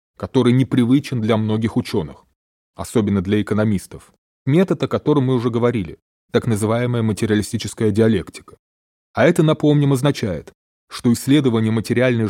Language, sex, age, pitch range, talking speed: Russian, male, 20-39, 95-125 Hz, 120 wpm